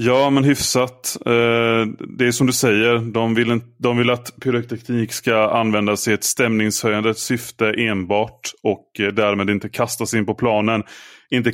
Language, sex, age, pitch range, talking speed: Swedish, male, 30-49, 105-120 Hz, 145 wpm